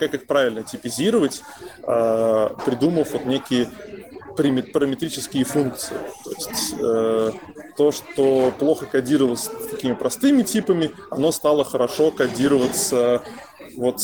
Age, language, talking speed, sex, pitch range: 20-39, Russian, 95 wpm, male, 125-160 Hz